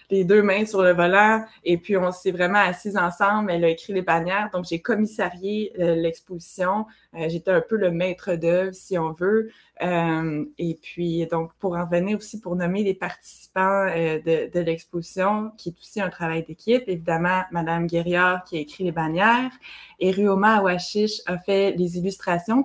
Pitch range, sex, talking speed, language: 170-210 Hz, female, 185 wpm, French